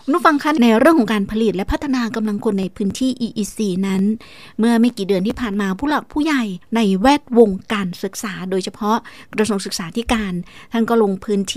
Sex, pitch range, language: female, 200-255 Hz, Thai